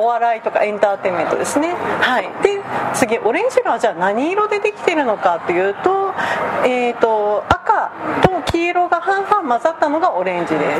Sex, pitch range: female, 230-370 Hz